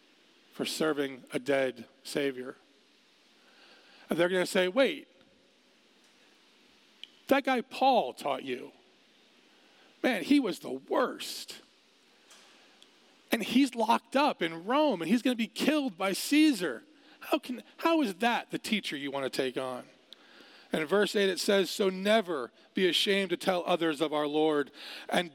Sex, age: male, 40-59